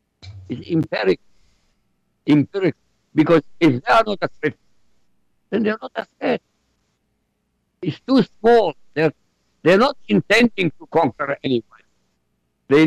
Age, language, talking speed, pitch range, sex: 60-79, English, 110 wpm, 125-175 Hz, male